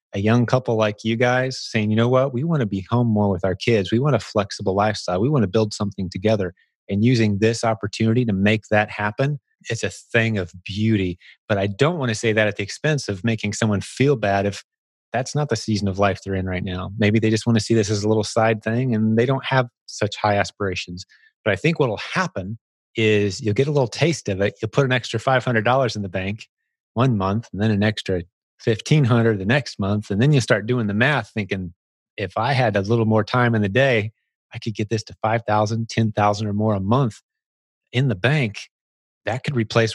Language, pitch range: English, 100-120 Hz